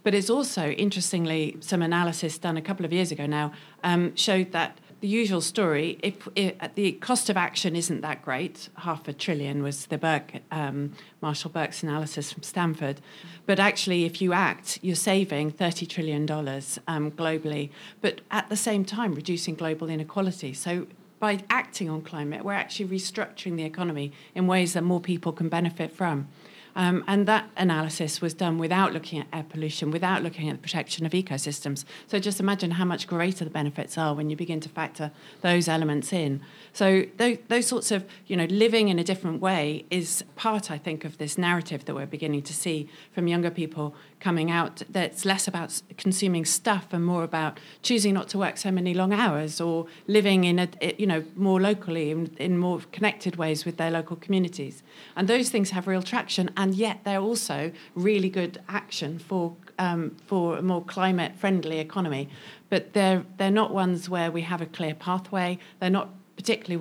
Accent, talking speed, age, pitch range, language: British, 185 wpm, 40-59, 160-195 Hz, English